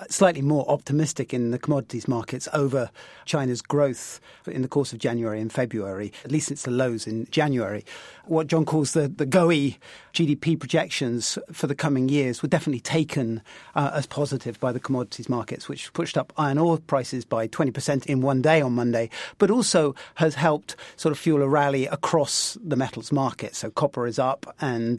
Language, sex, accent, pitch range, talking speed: English, male, British, 130-165 Hz, 185 wpm